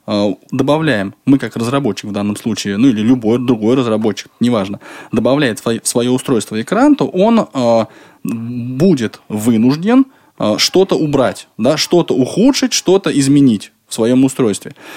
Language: Russian